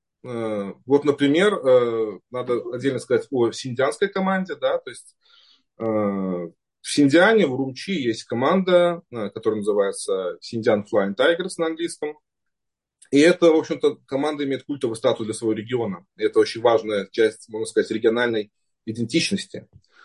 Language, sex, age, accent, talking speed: Russian, male, 30-49, native, 130 wpm